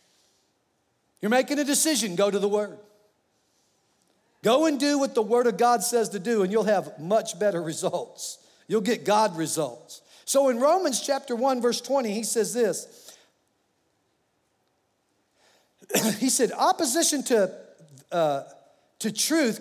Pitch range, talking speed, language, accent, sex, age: 200-255 Hz, 140 wpm, English, American, male, 50-69